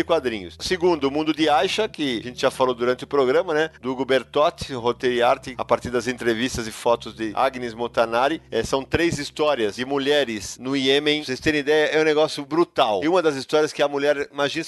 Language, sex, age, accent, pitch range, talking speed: Portuguese, male, 40-59, Brazilian, 130-160 Hz, 215 wpm